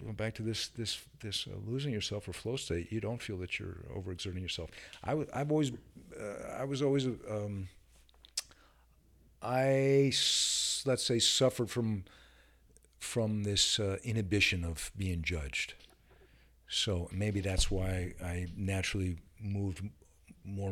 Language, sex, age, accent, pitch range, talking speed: English, male, 50-69, American, 75-120 Hz, 140 wpm